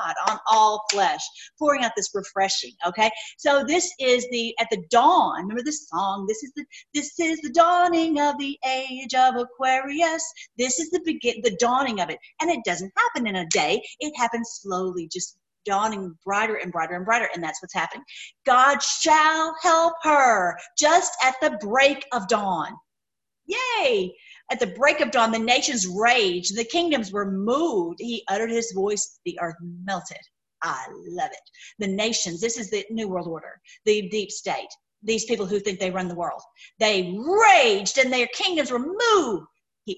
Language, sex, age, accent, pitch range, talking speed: English, female, 40-59, American, 205-295 Hz, 180 wpm